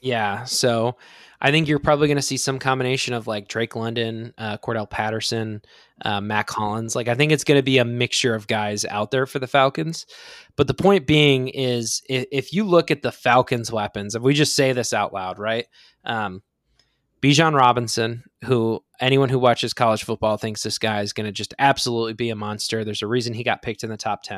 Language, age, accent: English, 20-39, American